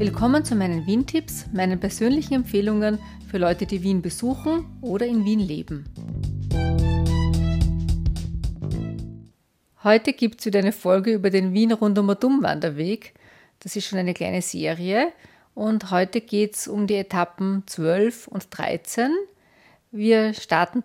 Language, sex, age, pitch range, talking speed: German, female, 40-59, 185-230 Hz, 130 wpm